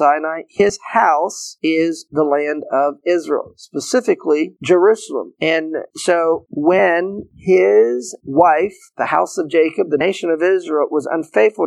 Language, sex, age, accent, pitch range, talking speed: English, male, 40-59, American, 150-185 Hz, 125 wpm